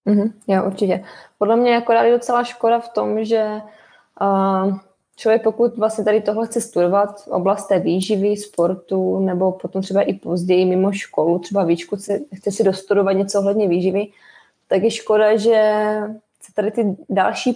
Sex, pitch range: female, 195-235 Hz